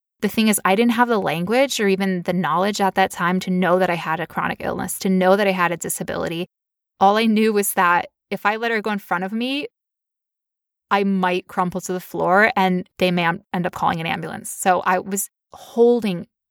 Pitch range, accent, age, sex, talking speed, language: 180-215 Hz, American, 20-39, female, 225 wpm, English